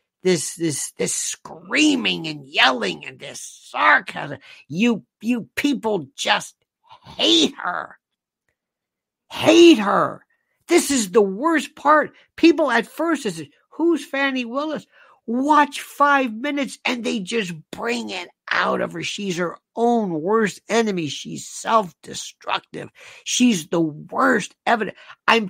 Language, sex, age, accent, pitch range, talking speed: English, male, 50-69, American, 200-285 Hz, 120 wpm